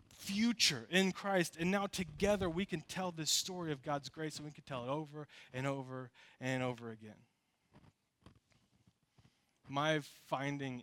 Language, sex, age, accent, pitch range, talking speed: English, male, 20-39, American, 120-140 Hz, 150 wpm